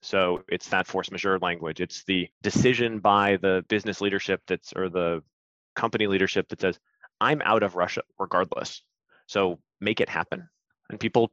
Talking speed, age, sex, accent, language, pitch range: 165 wpm, 30-49, male, American, English, 95-115 Hz